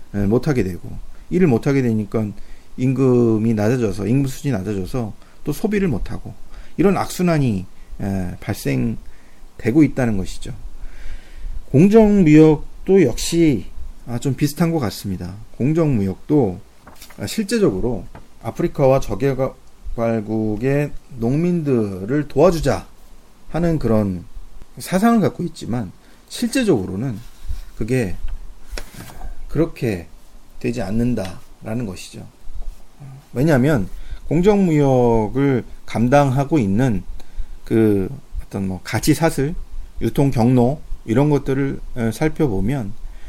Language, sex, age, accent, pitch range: Korean, male, 40-59, native, 95-145 Hz